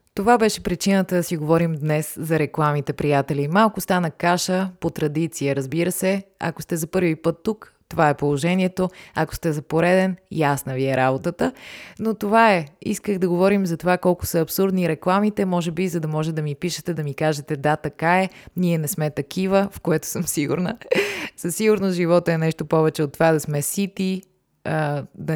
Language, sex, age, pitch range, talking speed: Bulgarian, female, 20-39, 155-180 Hz, 190 wpm